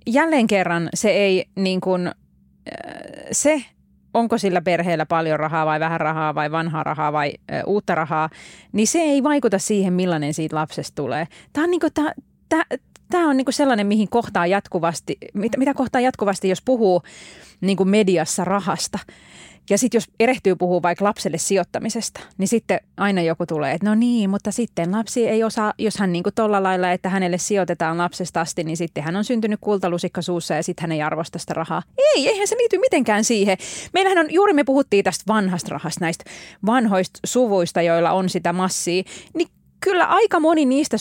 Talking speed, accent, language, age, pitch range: 180 wpm, native, Finnish, 30-49, 170-240 Hz